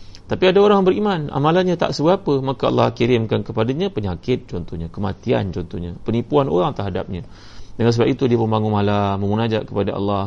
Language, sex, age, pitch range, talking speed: Malay, male, 30-49, 100-130 Hz, 160 wpm